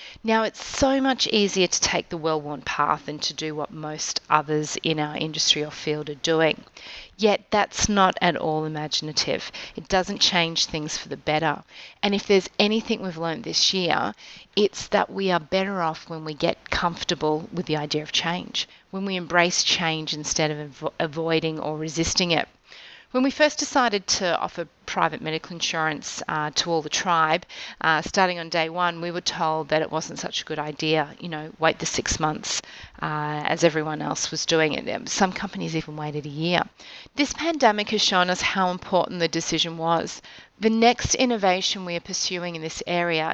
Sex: female